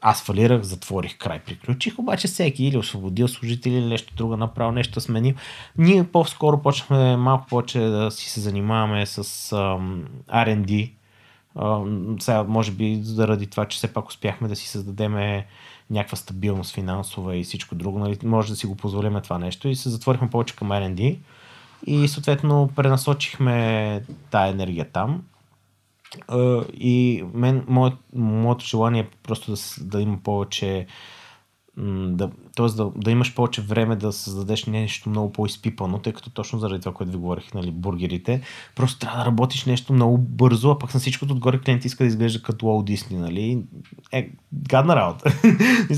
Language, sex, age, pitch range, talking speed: Bulgarian, male, 30-49, 105-130 Hz, 165 wpm